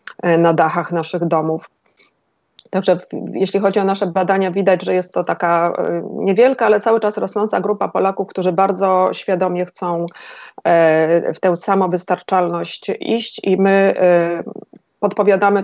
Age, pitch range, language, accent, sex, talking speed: 30-49, 170-200 Hz, Polish, native, female, 125 wpm